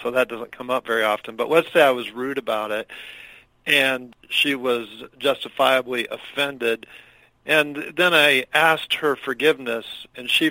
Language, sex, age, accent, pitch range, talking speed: English, male, 50-69, American, 130-155 Hz, 160 wpm